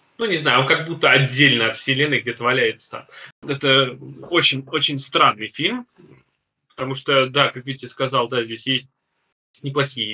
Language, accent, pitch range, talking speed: Russian, native, 125-160 Hz, 155 wpm